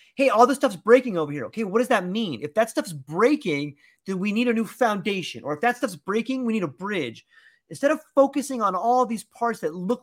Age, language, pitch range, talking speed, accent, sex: 30-49, English, 180-250 Hz, 240 wpm, American, male